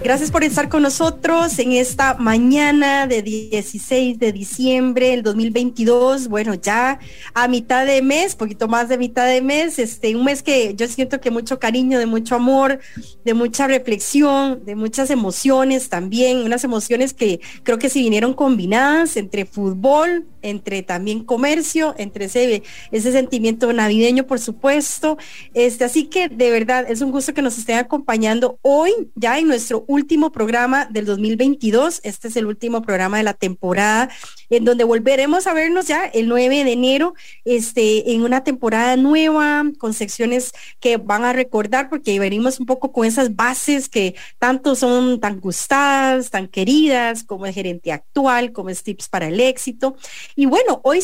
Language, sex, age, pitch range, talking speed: English, female, 30-49, 225-275 Hz, 165 wpm